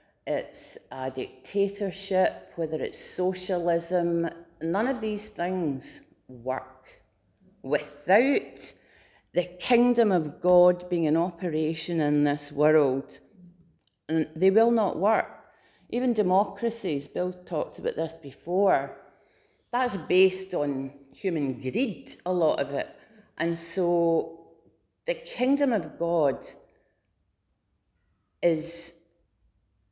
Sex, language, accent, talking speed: female, English, British, 100 wpm